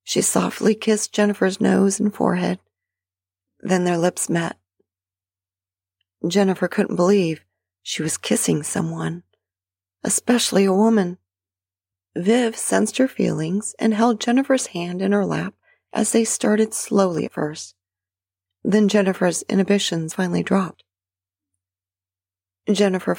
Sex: female